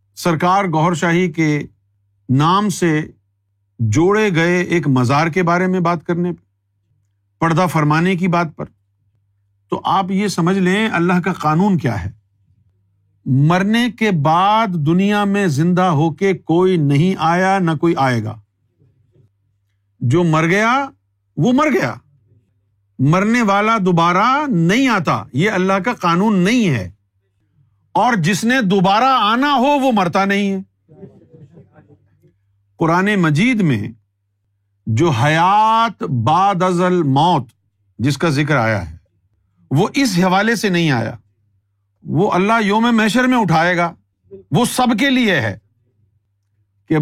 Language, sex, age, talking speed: Urdu, male, 50-69, 135 wpm